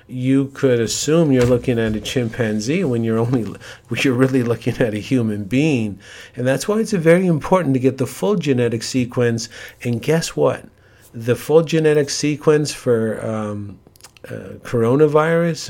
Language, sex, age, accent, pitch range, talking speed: English, male, 50-69, American, 115-135 Hz, 165 wpm